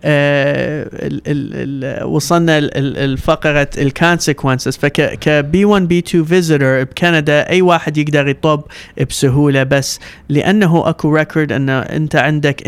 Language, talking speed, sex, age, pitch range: English, 135 wpm, male, 30-49, 140-165 Hz